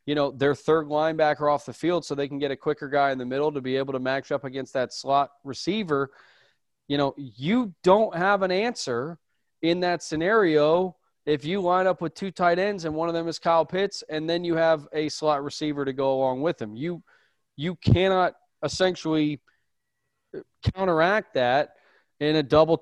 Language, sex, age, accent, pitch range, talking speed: English, male, 30-49, American, 140-175 Hz, 195 wpm